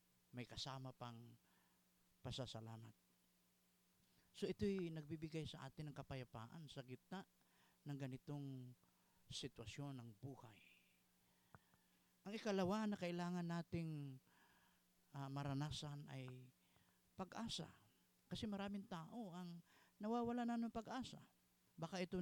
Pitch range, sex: 125-165 Hz, male